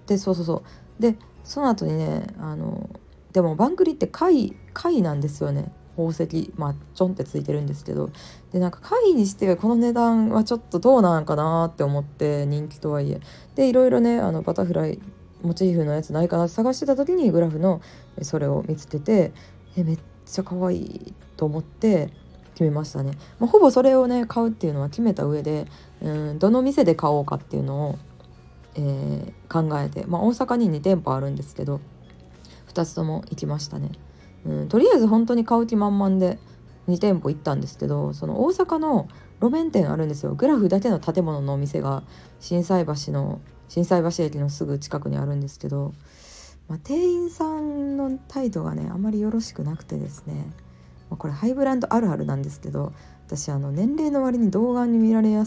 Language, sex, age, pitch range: Japanese, female, 20-39, 135-220 Hz